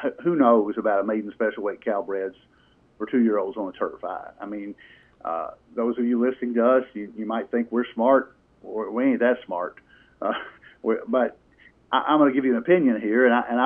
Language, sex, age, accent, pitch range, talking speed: English, male, 50-69, American, 110-135 Hz, 210 wpm